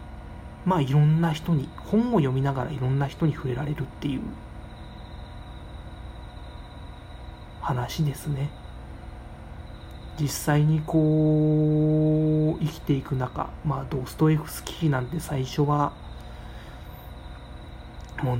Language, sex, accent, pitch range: Japanese, male, native, 130-155 Hz